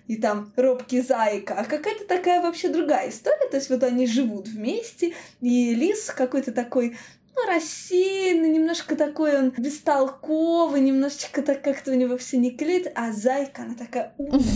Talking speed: 160 wpm